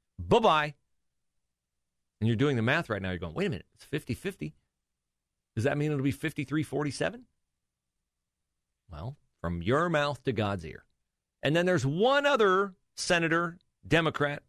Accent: American